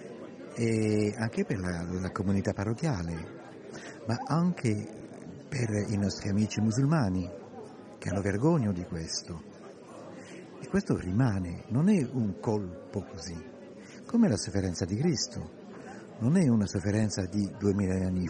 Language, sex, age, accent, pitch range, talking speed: Italian, male, 50-69, native, 90-115 Hz, 130 wpm